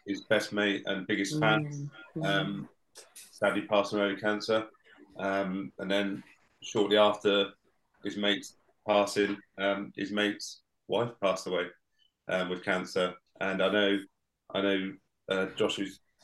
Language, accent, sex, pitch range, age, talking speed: English, British, male, 100-110 Hz, 30-49, 135 wpm